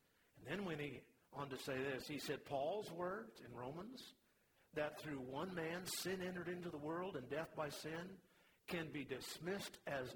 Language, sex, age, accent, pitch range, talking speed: English, male, 50-69, American, 135-170 Hz, 185 wpm